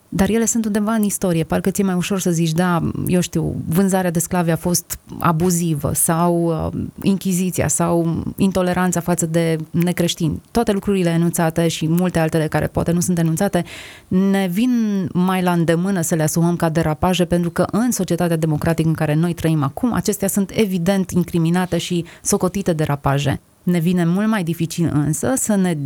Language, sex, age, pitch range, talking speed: Romanian, female, 20-39, 165-185 Hz, 170 wpm